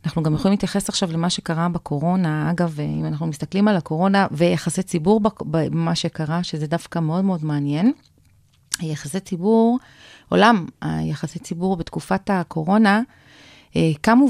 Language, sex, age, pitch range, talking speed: Hebrew, female, 30-49, 160-205 Hz, 130 wpm